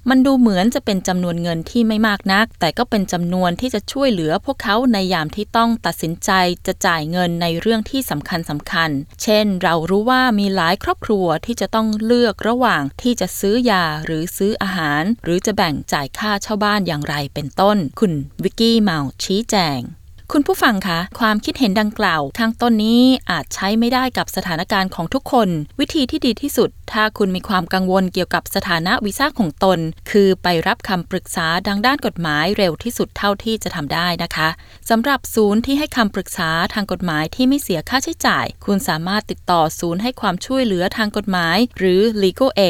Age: 20-39